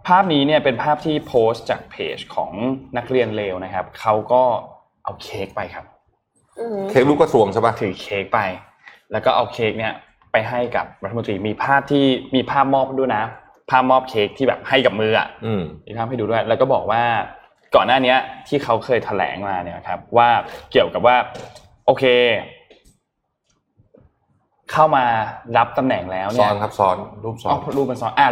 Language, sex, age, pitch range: Thai, male, 20-39, 110-135 Hz